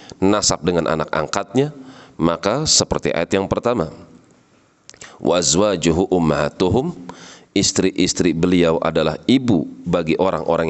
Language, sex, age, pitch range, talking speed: Indonesian, male, 40-59, 80-95 Hz, 95 wpm